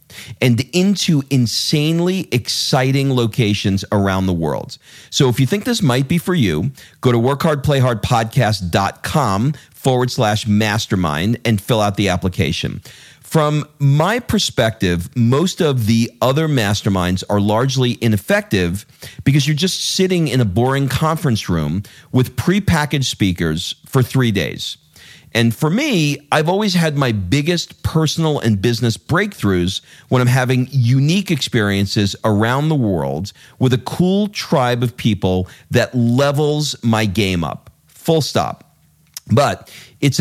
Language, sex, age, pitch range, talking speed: English, male, 40-59, 105-145 Hz, 135 wpm